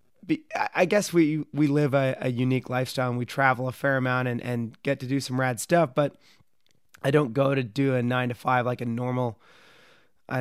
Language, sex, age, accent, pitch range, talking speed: English, male, 30-49, American, 125-150 Hz, 215 wpm